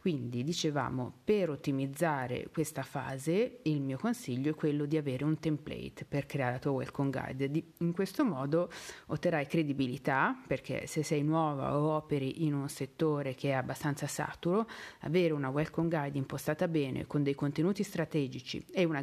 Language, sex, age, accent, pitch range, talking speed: Italian, female, 40-59, native, 140-175 Hz, 160 wpm